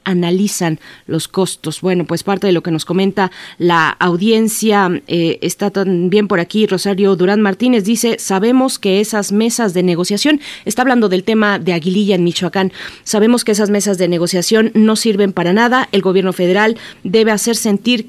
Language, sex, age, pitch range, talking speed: Spanish, female, 30-49, 180-210 Hz, 175 wpm